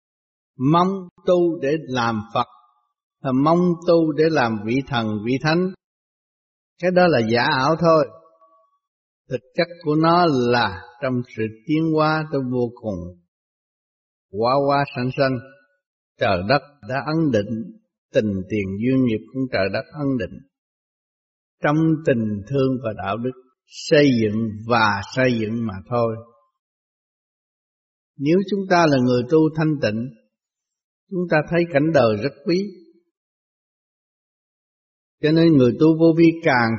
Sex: male